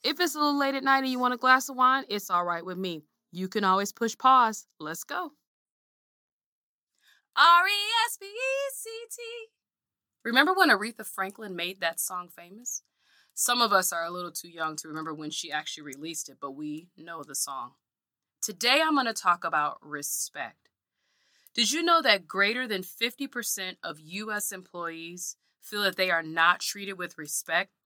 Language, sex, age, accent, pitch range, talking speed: English, female, 20-39, American, 165-230 Hz, 170 wpm